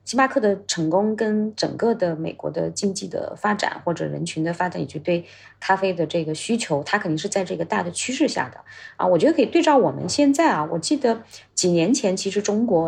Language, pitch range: Chinese, 170-230 Hz